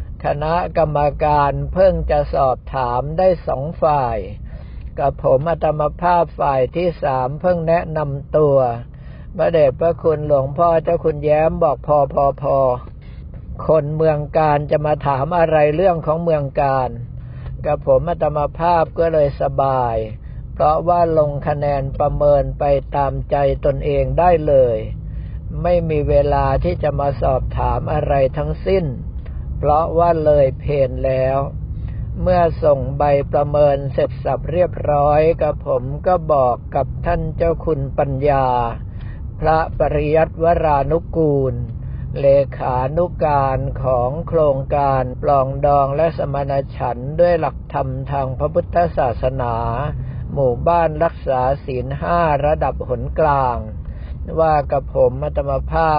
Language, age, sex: Thai, 60-79, male